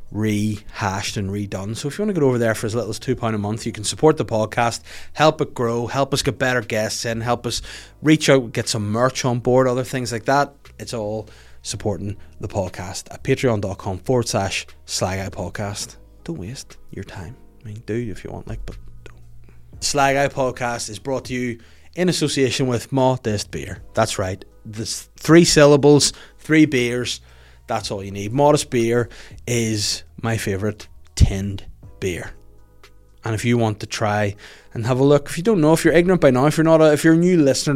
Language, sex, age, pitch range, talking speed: English, male, 20-39, 100-125 Hz, 200 wpm